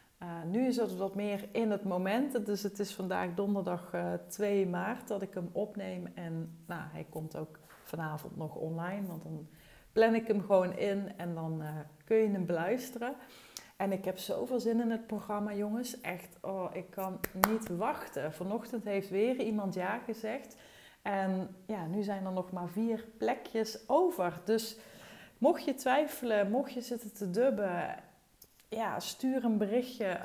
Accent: Dutch